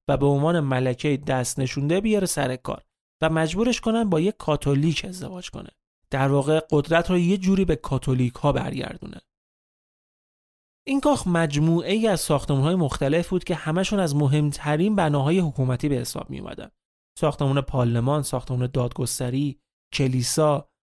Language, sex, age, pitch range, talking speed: Persian, male, 30-49, 135-185 Hz, 145 wpm